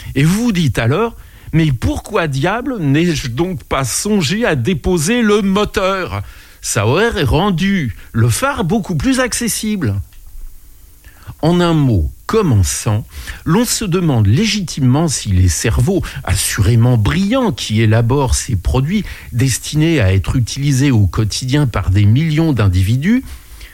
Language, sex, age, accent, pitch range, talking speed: French, male, 60-79, French, 100-170 Hz, 125 wpm